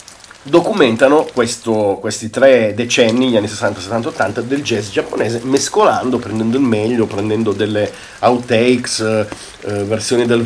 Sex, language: male, Italian